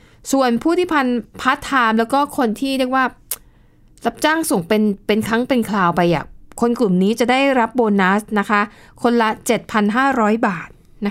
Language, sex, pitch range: Thai, female, 200-255 Hz